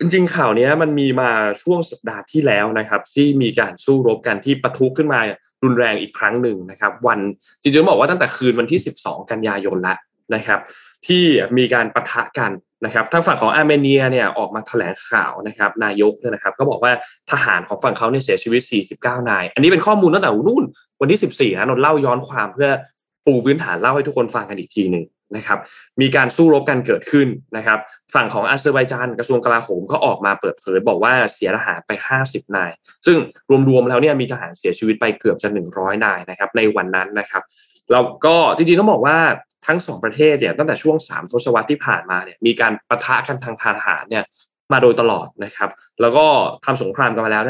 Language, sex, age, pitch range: Thai, male, 20-39, 110-150 Hz